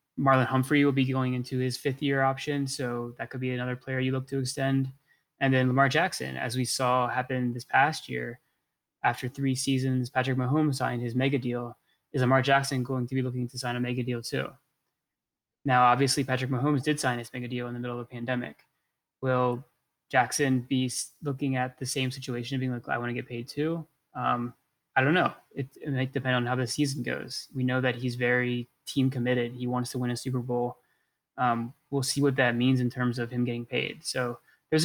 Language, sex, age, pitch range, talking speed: English, male, 20-39, 125-135 Hz, 215 wpm